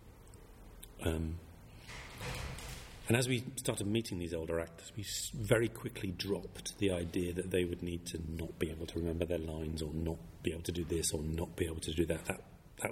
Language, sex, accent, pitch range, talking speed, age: English, male, British, 85-105 Hz, 200 wpm, 40-59